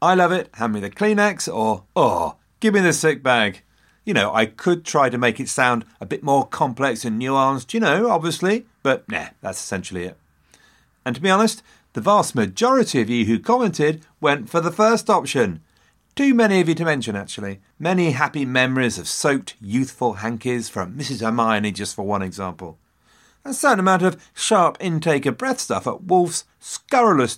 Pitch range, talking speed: 100-170 Hz, 190 wpm